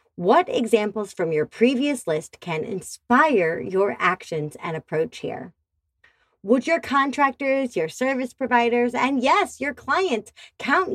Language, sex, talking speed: English, female, 130 wpm